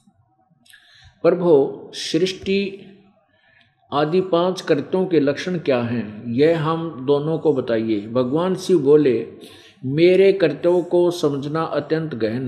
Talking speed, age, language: 110 wpm, 50-69, Hindi